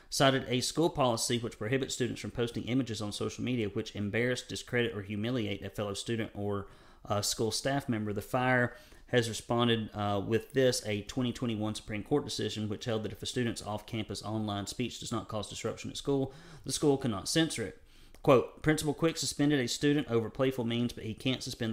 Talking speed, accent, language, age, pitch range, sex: 195 wpm, American, English, 30-49, 110-140 Hz, male